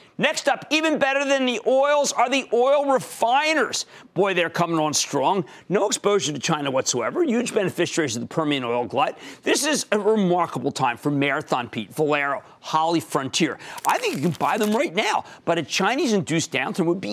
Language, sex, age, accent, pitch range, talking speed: English, male, 40-59, American, 150-235 Hz, 185 wpm